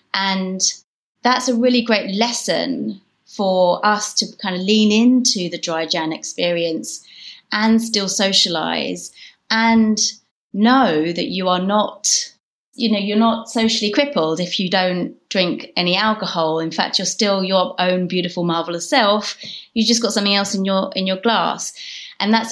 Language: English